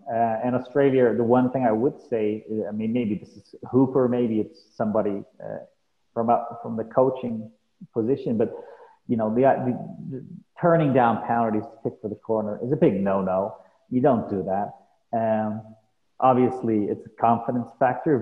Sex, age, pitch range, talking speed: male, 30-49, 110-125 Hz, 180 wpm